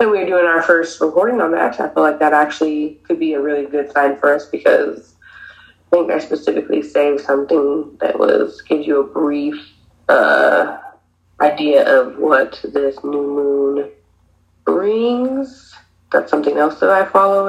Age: 20-39